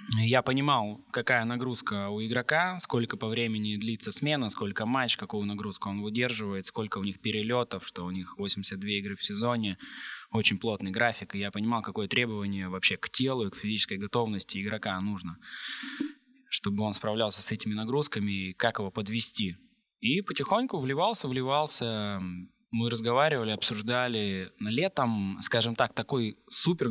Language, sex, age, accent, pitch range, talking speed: Russian, male, 20-39, native, 100-125 Hz, 150 wpm